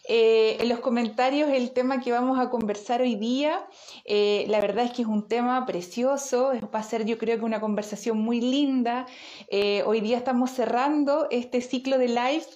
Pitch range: 225-260 Hz